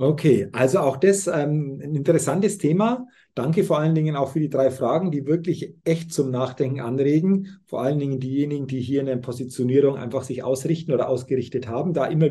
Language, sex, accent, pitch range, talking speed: German, male, German, 140-195 Hz, 195 wpm